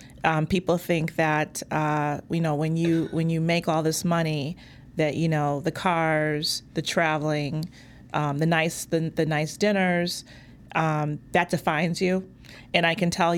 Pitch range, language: 155-175 Hz, English